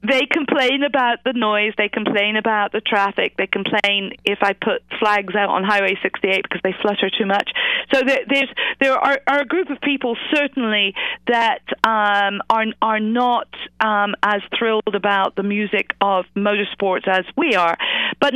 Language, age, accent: English, 40-59, British